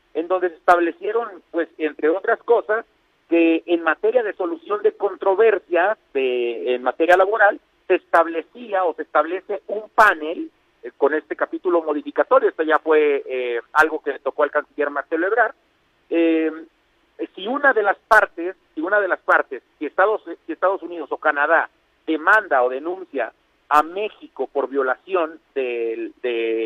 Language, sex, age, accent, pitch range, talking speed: Spanish, male, 50-69, Mexican, 150-235 Hz, 160 wpm